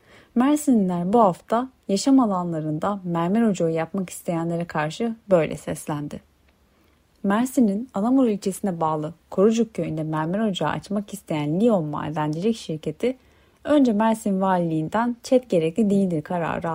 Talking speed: 115 wpm